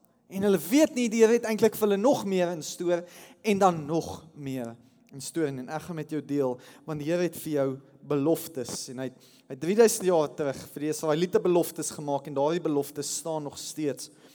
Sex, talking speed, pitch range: male, 220 wpm, 150-215 Hz